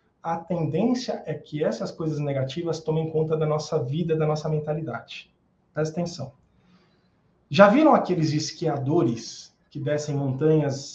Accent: Brazilian